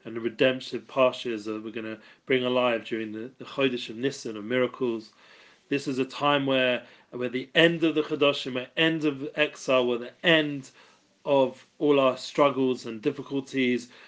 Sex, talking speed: male, 180 wpm